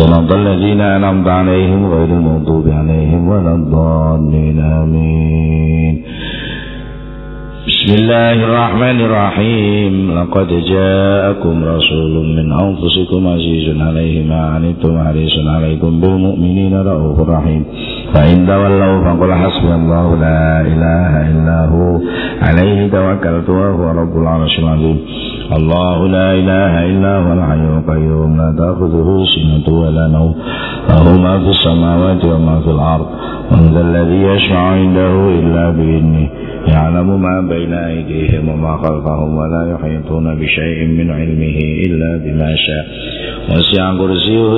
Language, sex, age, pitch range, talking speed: English, male, 50-69, 80-95 Hz, 105 wpm